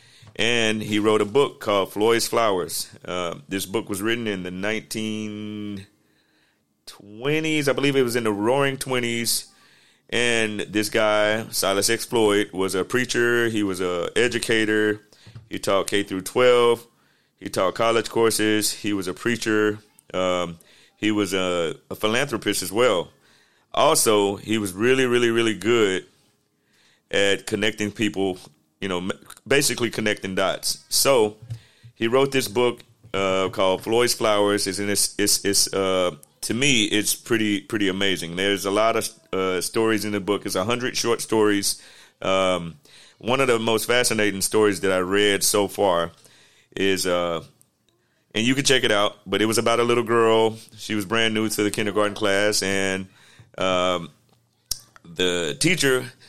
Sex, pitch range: male, 100-115 Hz